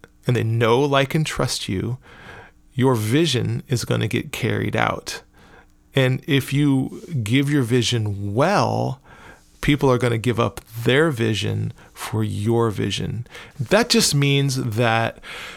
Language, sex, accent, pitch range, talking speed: English, male, American, 115-140 Hz, 145 wpm